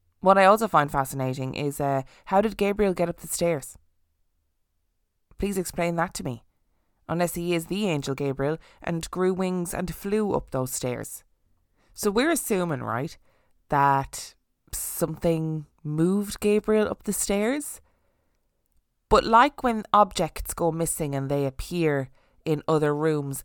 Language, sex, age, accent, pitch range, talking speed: English, female, 20-39, Irish, 140-195 Hz, 145 wpm